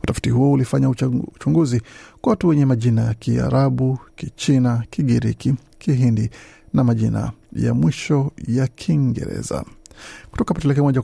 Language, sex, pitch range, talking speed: Swahili, male, 120-145 Hz, 115 wpm